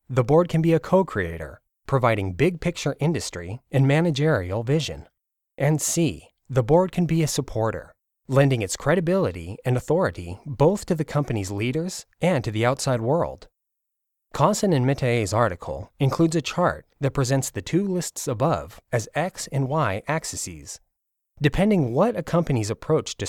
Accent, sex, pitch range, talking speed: American, male, 110-160 Hz, 150 wpm